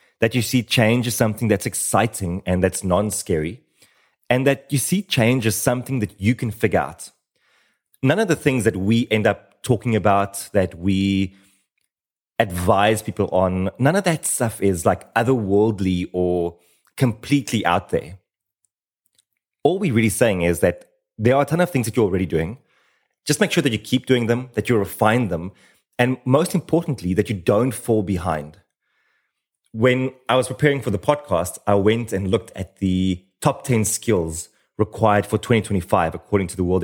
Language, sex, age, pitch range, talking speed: English, male, 30-49, 95-125 Hz, 175 wpm